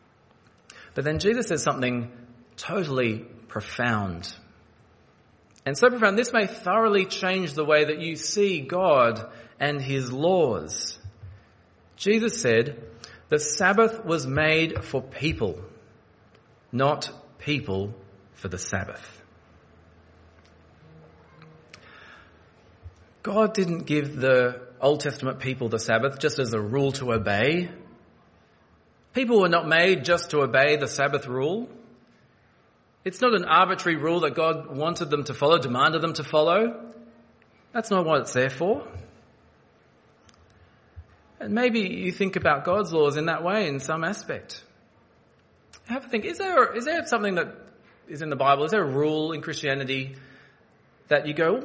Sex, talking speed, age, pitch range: male, 140 wpm, 40-59, 115-180 Hz